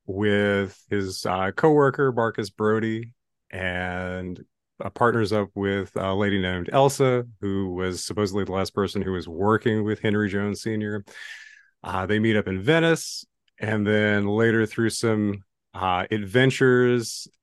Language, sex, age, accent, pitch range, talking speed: English, male, 30-49, American, 95-120 Hz, 140 wpm